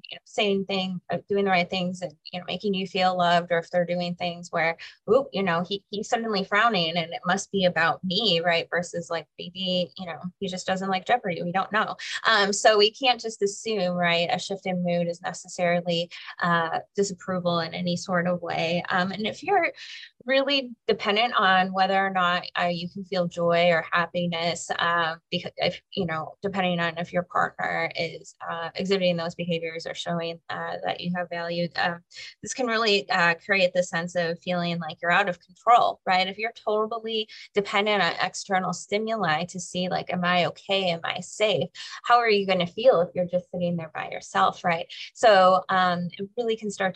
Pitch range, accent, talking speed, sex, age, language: 175-200 Hz, American, 205 wpm, female, 20-39, English